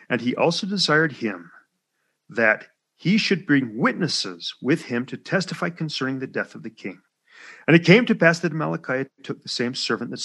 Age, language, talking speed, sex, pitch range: 40-59, English, 185 wpm, male, 125-165 Hz